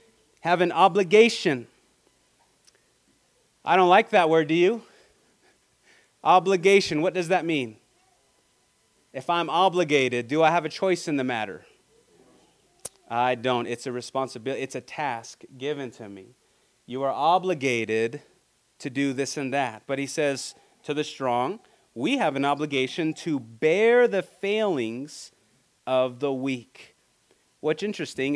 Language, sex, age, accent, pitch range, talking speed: English, male, 30-49, American, 130-175 Hz, 135 wpm